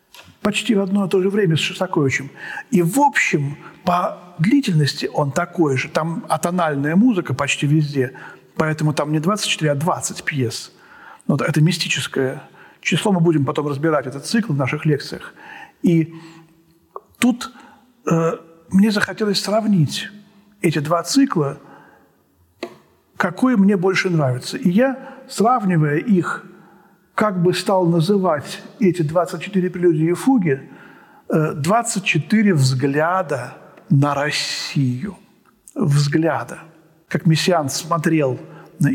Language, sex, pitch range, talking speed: Russian, male, 150-195 Hz, 115 wpm